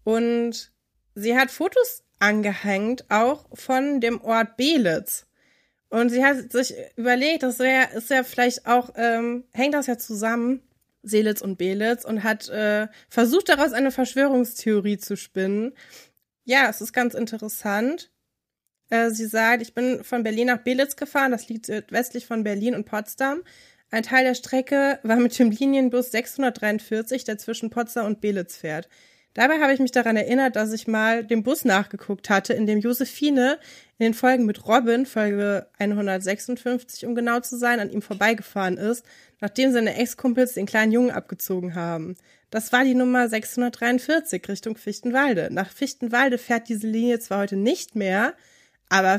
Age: 20-39